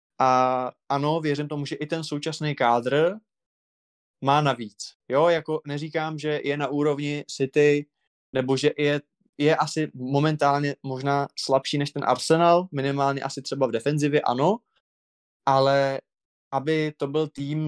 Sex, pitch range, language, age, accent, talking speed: male, 135-155 Hz, Czech, 20-39, native, 140 wpm